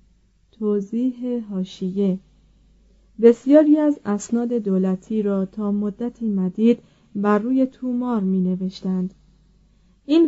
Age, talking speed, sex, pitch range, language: 30-49, 95 wpm, female, 190-235 Hz, Persian